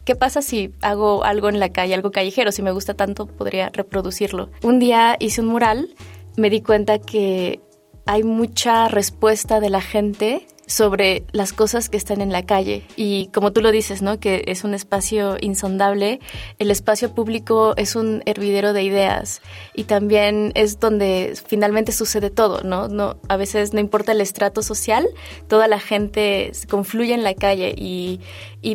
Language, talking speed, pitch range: Spanish, 175 wpm, 195-220 Hz